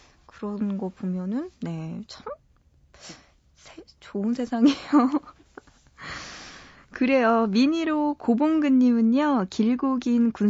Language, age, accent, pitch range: Korean, 20-39, native, 195-255 Hz